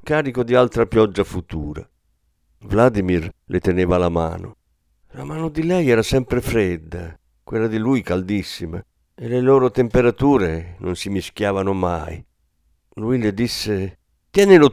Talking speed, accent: 135 wpm, native